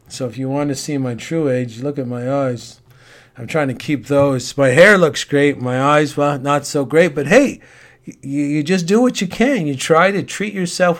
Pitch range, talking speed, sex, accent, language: 125-145 Hz, 225 wpm, male, American, English